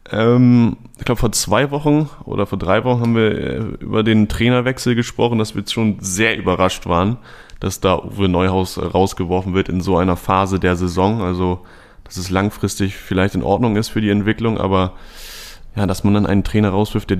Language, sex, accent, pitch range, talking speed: German, male, German, 95-120 Hz, 190 wpm